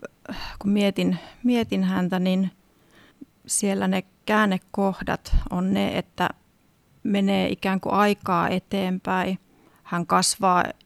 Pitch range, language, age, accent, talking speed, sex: 185-205 Hz, Finnish, 30-49, native, 100 wpm, female